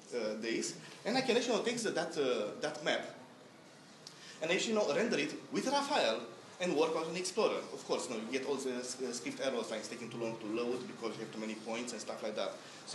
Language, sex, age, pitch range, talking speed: English, male, 20-39, 125-185 Hz, 260 wpm